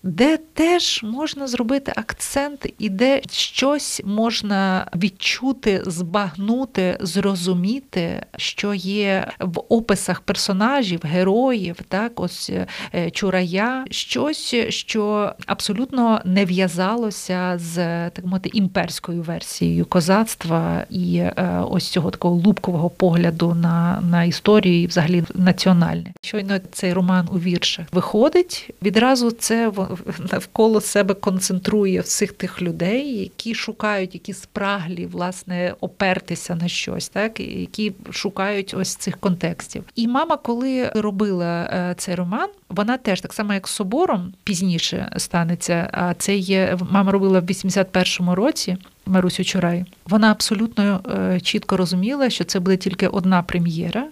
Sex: female